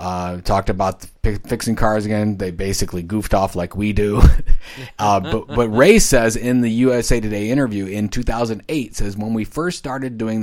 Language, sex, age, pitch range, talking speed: English, male, 30-49, 95-115 Hz, 180 wpm